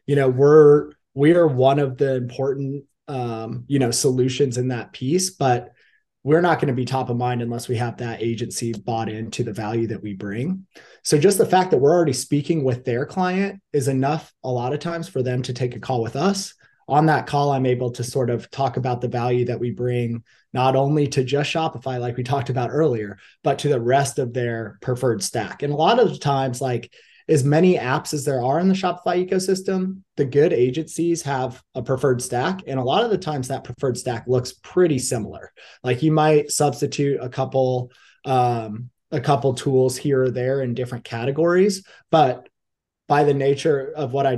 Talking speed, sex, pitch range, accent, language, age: 210 wpm, male, 125-150 Hz, American, English, 30-49